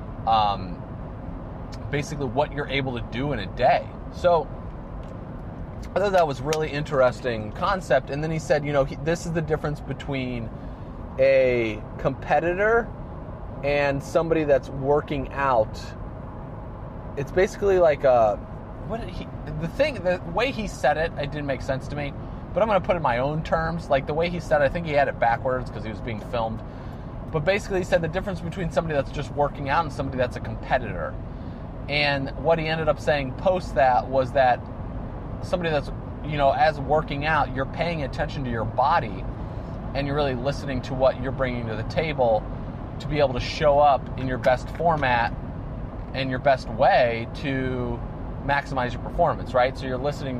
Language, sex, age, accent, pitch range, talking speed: English, male, 30-49, American, 120-150 Hz, 190 wpm